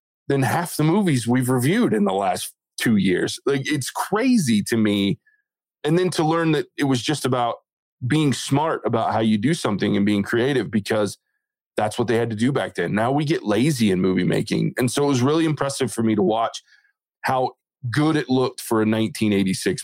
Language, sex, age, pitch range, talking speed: English, male, 20-39, 110-160 Hz, 205 wpm